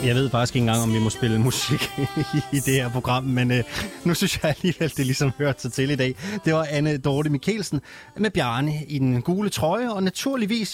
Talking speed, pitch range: 230 wpm, 115-155 Hz